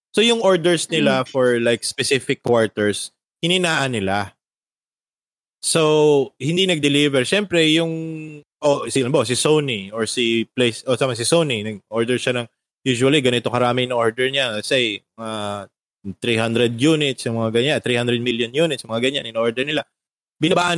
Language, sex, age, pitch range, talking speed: English, male, 20-39, 120-165 Hz, 145 wpm